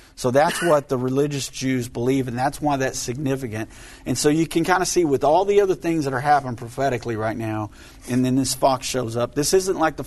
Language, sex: English, male